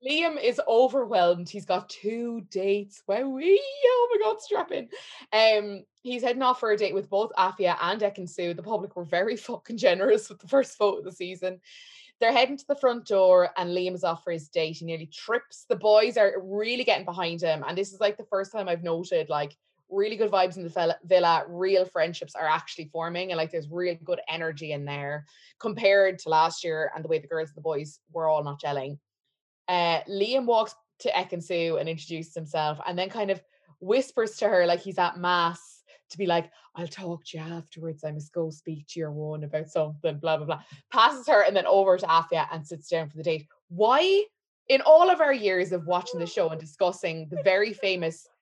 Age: 20-39